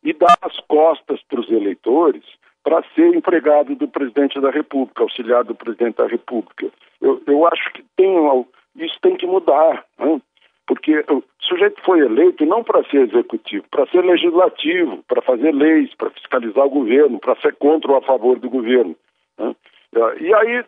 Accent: Brazilian